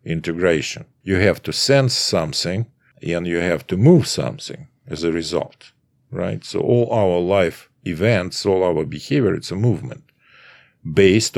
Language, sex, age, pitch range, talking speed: English, male, 50-69, 80-110 Hz, 150 wpm